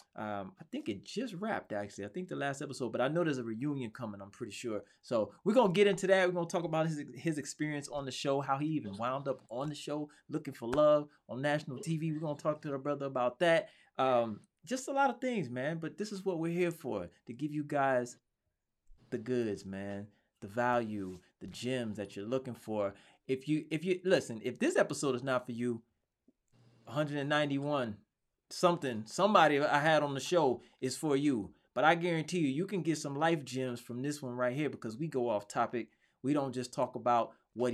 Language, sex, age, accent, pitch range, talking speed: English, male, 20-39, American, 120-150 Hz, 225 wpm